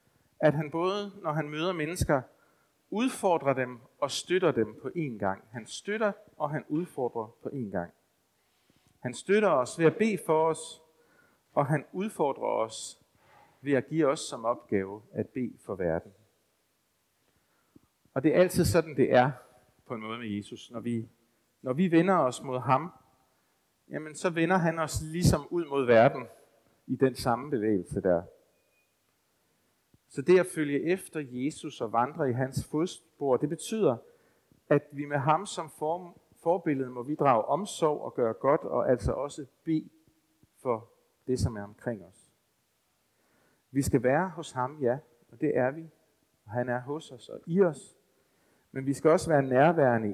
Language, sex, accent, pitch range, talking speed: Danish, male, native, 125-160 Hz, 165 wpm